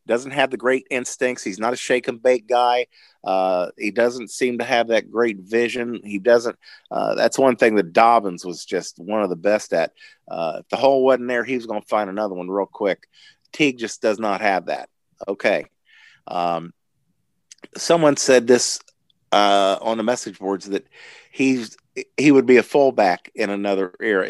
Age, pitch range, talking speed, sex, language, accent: 50-69, 95-125 Hz, 190 wpm, male, English, American